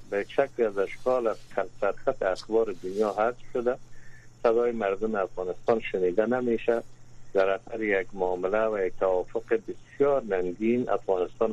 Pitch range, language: 110-125 Hz, Persian